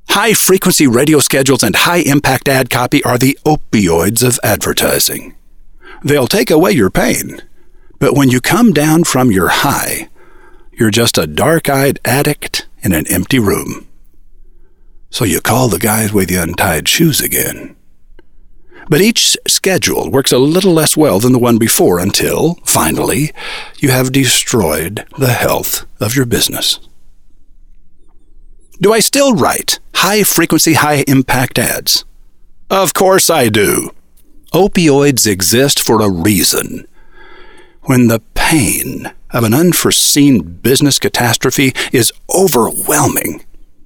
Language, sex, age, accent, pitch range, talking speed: English, male, 50-69, American, 100-155 Hz, 125 wpm